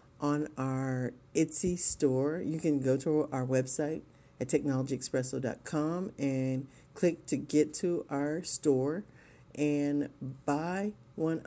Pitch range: 130-155 Hz